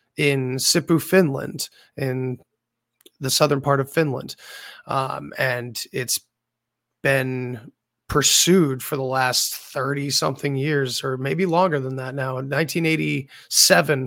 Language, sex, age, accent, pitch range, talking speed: English, male, 30-49, American, 130-155 Hz, 110 wpm